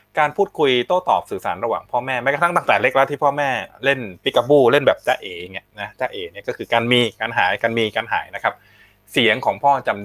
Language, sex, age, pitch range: Thai, male, 20-39, 125-190 Hz